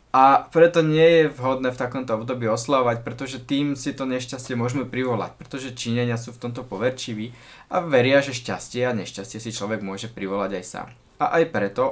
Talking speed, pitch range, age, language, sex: 185 wpm, 110-135 Hz, 20-39, Slovak, male